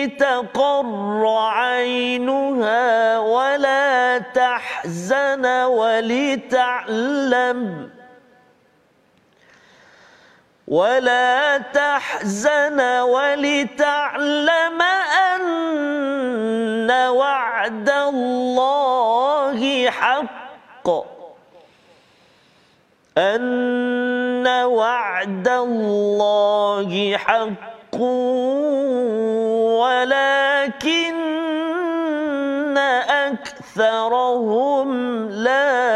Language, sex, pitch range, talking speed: Malayalam, male, 225-275 Hz, 35 wpm